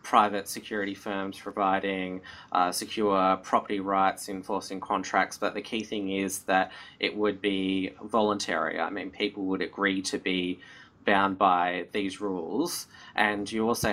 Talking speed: 145 wpm